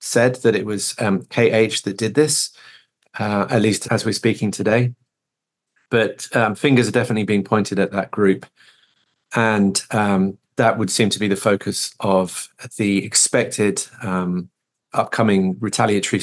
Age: 30-49